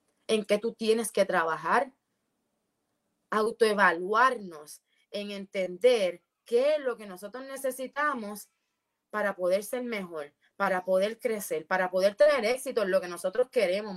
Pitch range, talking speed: 190-250 Hz, 135 wpm